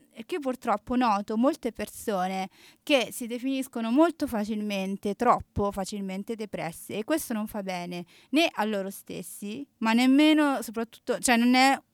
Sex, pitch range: female, 190-235 Hz